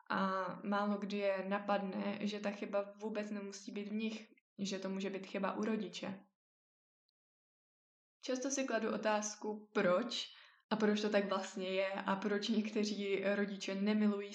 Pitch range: 195-215 Hz